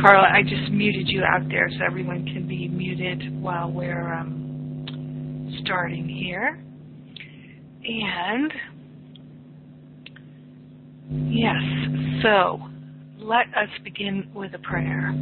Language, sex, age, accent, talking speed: English, female, 40-59, American, 105 wpm